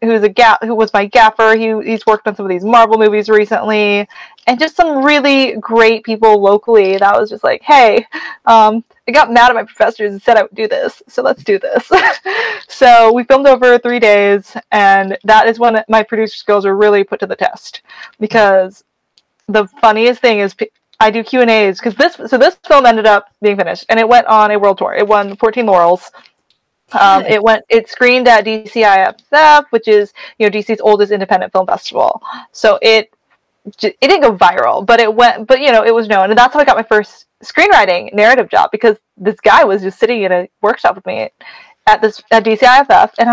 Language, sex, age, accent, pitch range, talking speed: English, female, 20-39, American, 210-260 Hz, 205 wpm